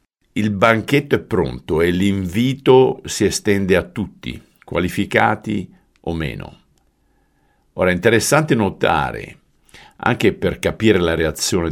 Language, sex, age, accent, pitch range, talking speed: Italian, male, 50-69, native, 80-110 Hz, 115 wpm